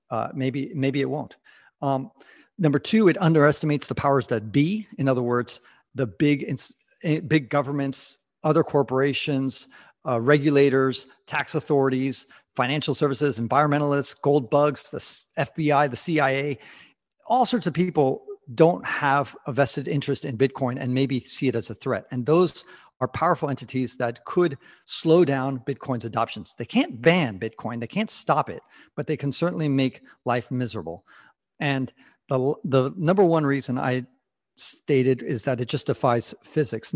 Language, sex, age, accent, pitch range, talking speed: English, male, 40-59, American, 125-150 Hz, 150 wpm